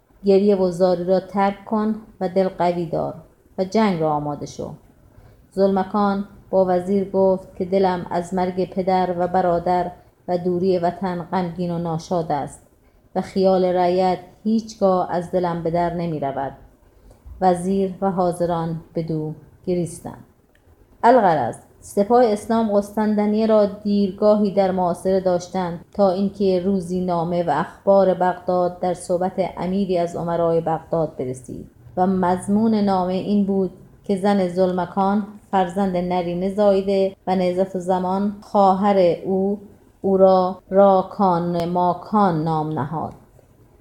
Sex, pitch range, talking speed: female, 180-195 Hz, 130 wpm